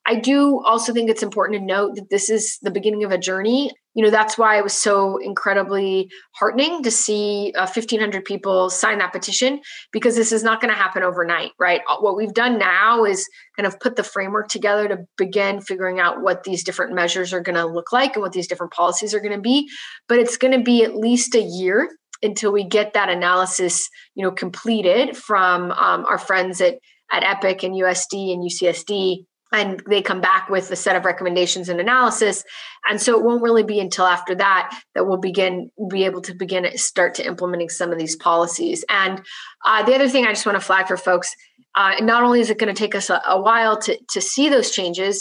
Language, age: English, 20-39